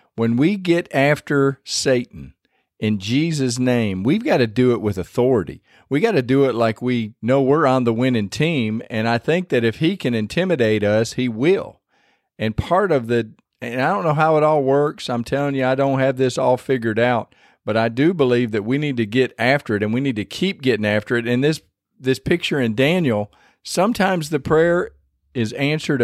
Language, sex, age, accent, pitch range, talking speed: English, male, 40-59, American, 115-145 Hz, 205 wpm